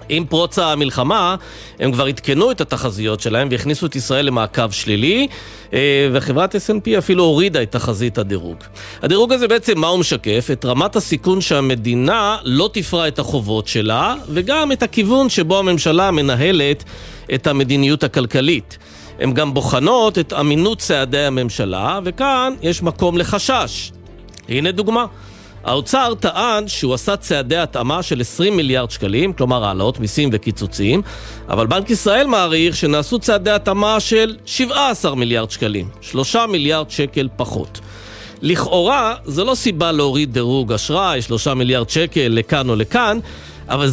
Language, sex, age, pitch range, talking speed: Hebrew, male, 40-59, 125-195 Hz, 140 wpm